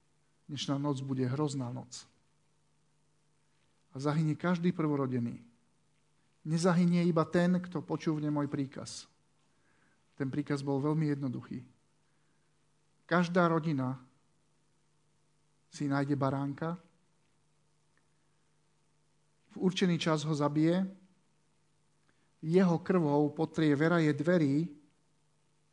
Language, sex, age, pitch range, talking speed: Slovak, male, 50-69, 145-170 Hz, 85 wpm